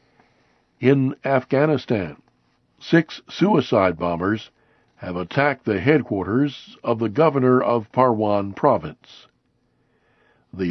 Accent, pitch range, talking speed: American, 105-135 Hz, 90 wpm